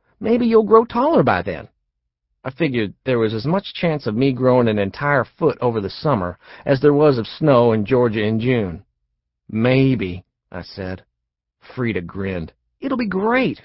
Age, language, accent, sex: 50-69, English, American, male